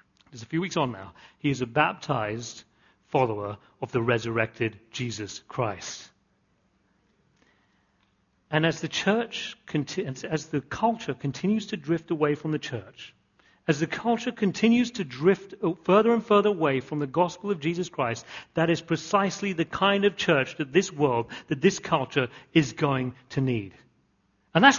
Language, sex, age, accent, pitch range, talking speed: English, male, 40-59, British, 130-195 Hz, 155 wpm